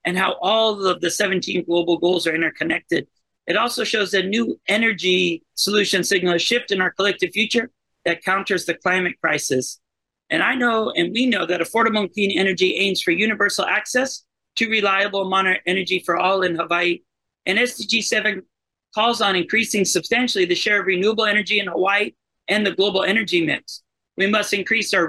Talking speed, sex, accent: 175 wpm, male, American